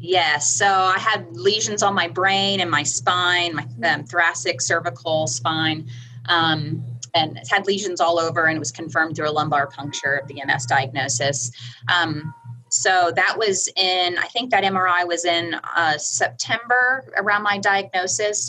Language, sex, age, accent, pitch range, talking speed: English, female, 20-39, American, 140-180 Hz, 160 wpm